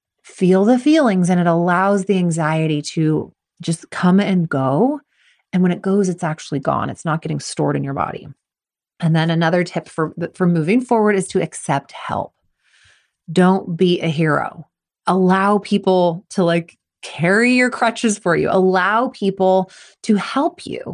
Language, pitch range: English, 170-230 Hz